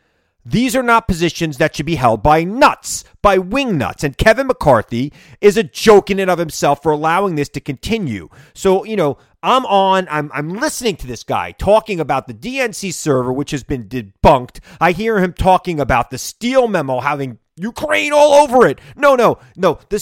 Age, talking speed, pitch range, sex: 30-49, 195 wpm, 145-215 Hz, male